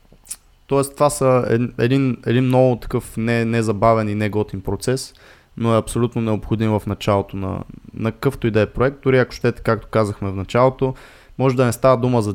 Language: Bulgarian